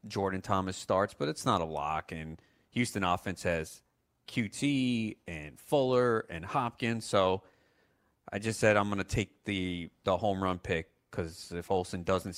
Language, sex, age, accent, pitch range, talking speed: English, male, 30-49, American, 90-105 Hz, 165 wpm